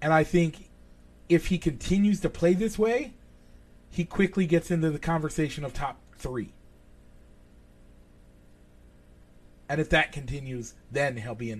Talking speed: 140 wpm